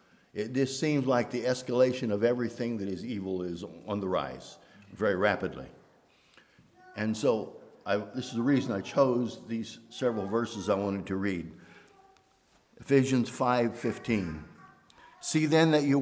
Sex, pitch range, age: male, 100-140 Hz, 60-79